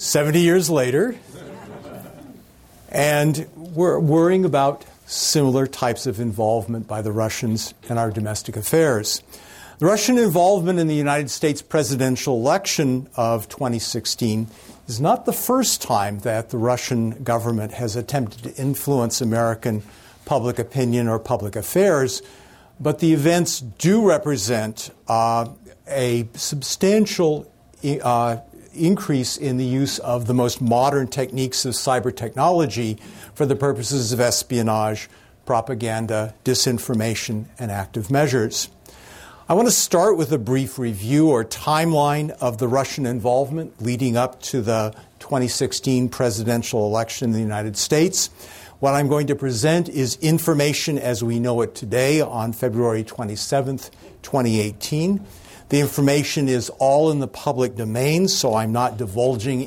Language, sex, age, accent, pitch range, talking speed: English, male, 60-79, American, 115-150 Hz, 135 wpm